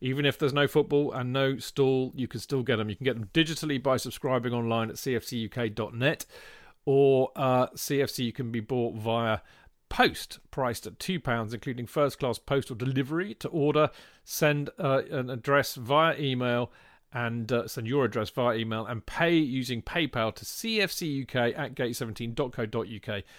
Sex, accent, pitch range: male, British, 115-145 Hz